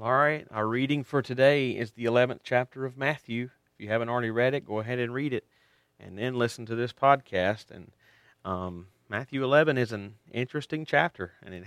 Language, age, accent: English, 40-59, American